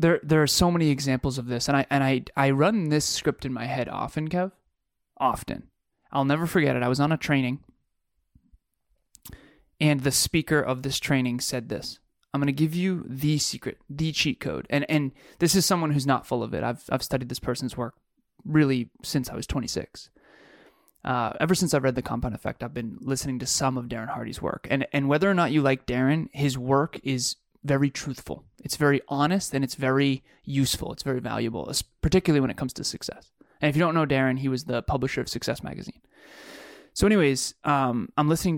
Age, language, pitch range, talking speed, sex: 20-39, English, 130-150 Hz, 210 wpm, male